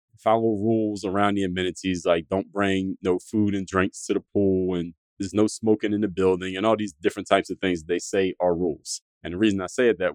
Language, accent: English, American